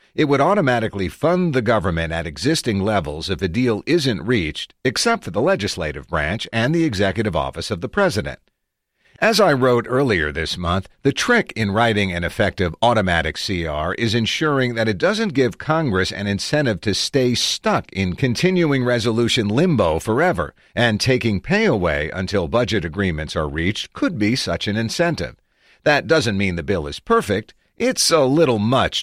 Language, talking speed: English, 170 wpm